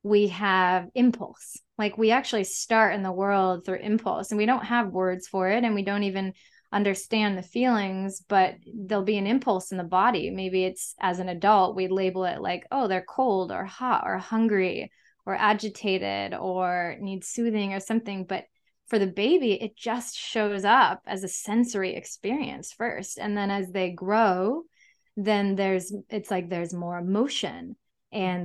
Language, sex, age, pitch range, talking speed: English, female, 20-39, 185-215 Hz, 175 wpm